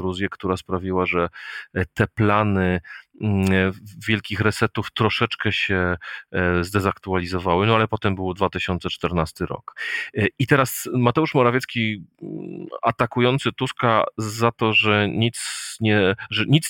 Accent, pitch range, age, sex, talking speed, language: native, 90-110 Hz, 40-59, male, 105 wpm, Polish